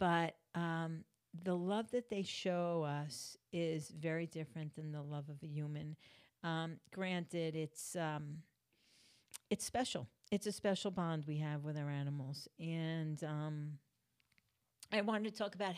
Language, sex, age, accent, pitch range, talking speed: English, female, 50-69, American, 165-210 Hz, 150 wpm